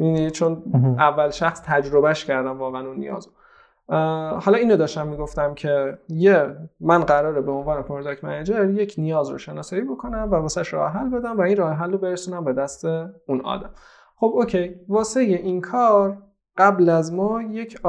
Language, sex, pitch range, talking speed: Persian, male, 150-190 Hz, 165 wpm